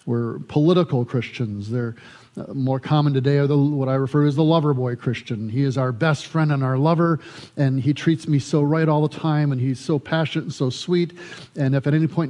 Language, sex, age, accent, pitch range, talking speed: English, male, 50-69, American, 125-150 Hz, 230 wpm